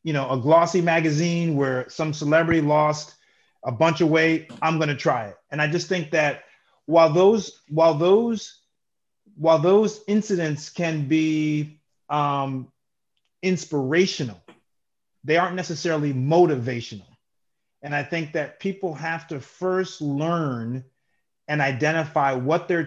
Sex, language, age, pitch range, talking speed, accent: male, English, 30-49, 140-180 Hz, 135 wpm, American